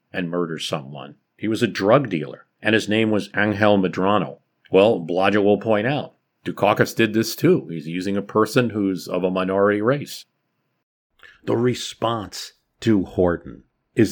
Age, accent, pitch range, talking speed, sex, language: 50-69, American, 85-110 Hz, 155 wpm, male, English